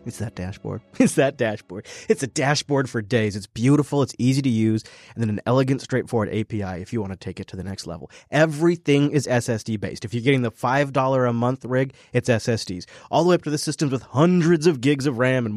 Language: English